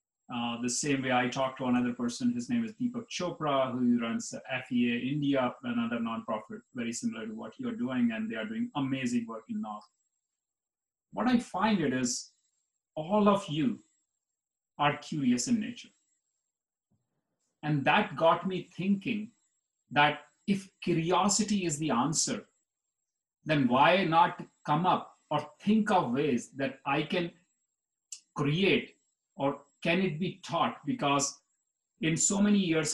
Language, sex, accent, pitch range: English, male, Indian, 135-190 Hz